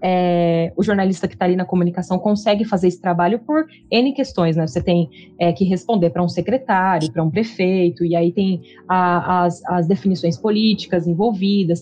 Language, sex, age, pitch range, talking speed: Portuguese, female, 20-39, 175-220 Hz, 185 wpm